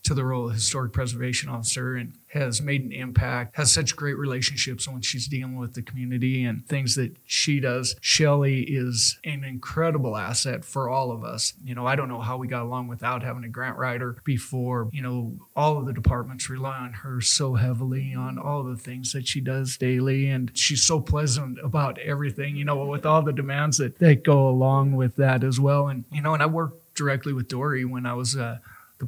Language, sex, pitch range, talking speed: English, male, 125-140 Hz, 220 wpm